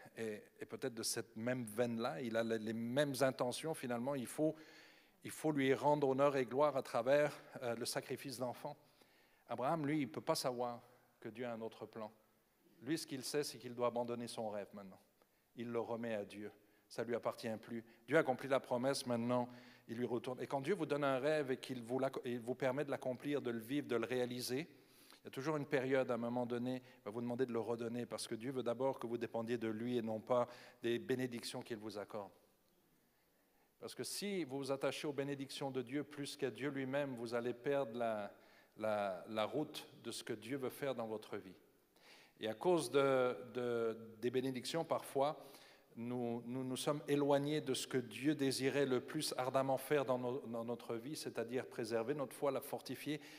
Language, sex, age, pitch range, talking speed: French, male, 40-59, 115-140 Hz, 210 wpm